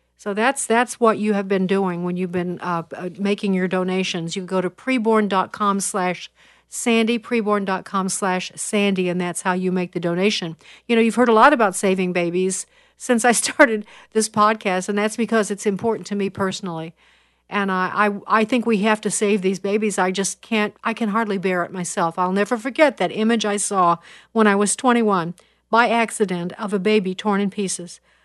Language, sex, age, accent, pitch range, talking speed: English, female, 50-69, American, 185-220 Hz, 205 wpm